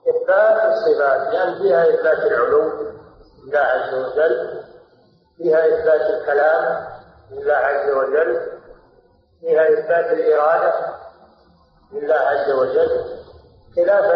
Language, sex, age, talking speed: Arabic, male, 50-69, 95 wpm